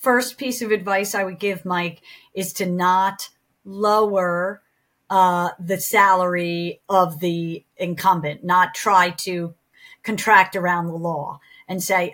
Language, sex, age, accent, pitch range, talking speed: English, female, 50-69, American, 175-205 Hz, 135 wpm